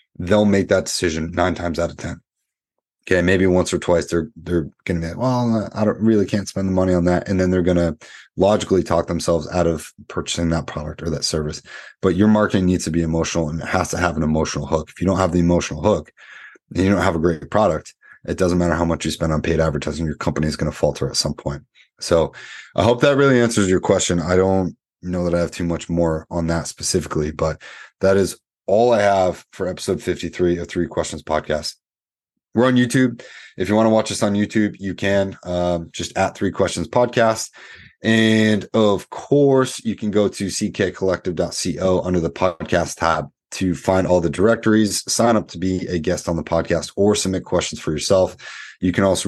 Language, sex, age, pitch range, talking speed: English, male, 30-49, 85-105 Hz, 220 wpm